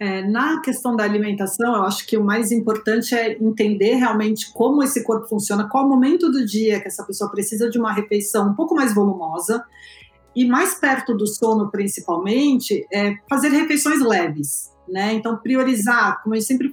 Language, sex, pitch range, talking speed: Portuguese, female, 215-265 Hz, 180 wpm